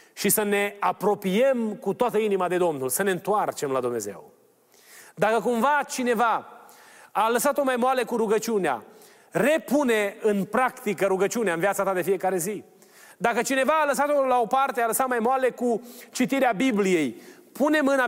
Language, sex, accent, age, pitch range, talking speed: Romanian, male, native, 30-49, 195-260 Hz, 165 wpm